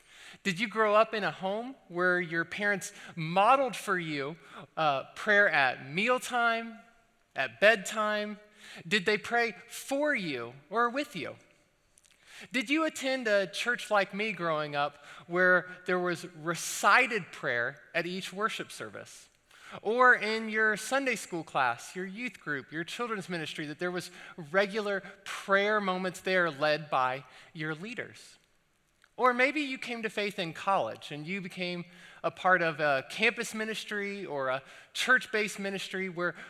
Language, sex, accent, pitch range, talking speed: English, male, American, 170-220 Hz, 150 wpm